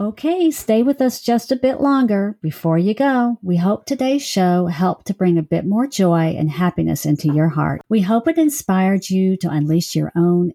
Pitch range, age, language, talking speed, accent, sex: 160-230 Hz, 50-69, English, 205 wpm, American, female